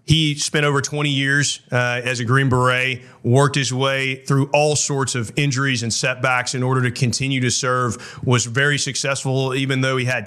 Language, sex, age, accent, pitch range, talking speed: English, male, 30-49, American, 125-140 Hz, 195 wpm